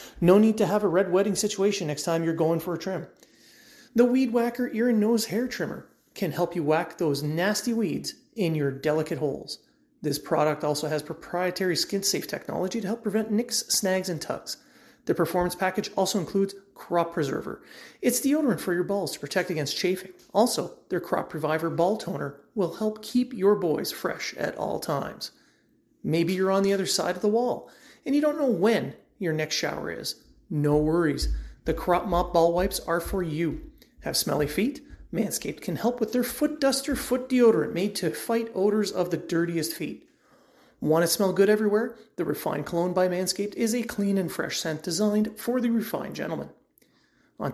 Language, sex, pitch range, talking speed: English, male, 165-225 Hz, 190 wpm